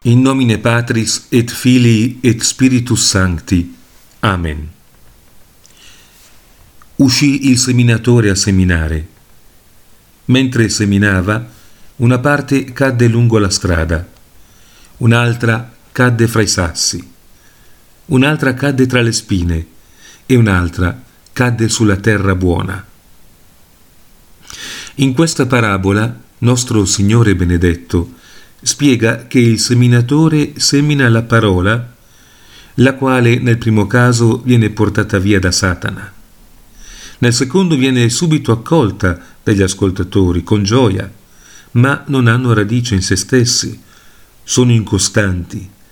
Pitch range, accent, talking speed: 95-125 Hz, native, 105 wpm